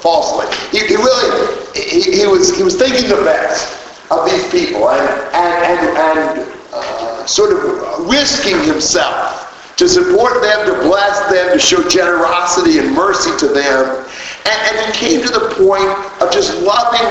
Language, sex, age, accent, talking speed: English, male, 50-69, American, 160 wpm